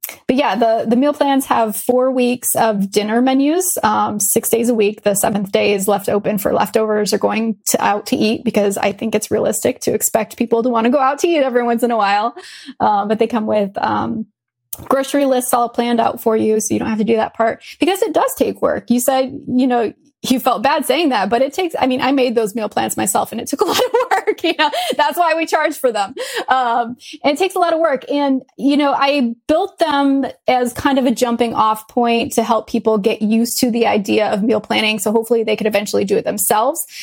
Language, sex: English, female